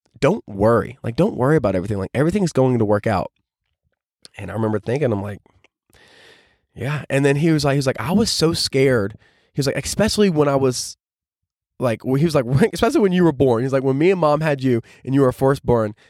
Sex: male